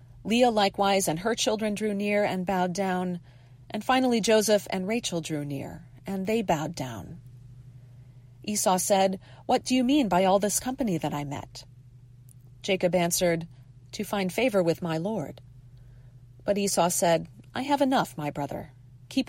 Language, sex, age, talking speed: English, female, 40-59, 160 wpm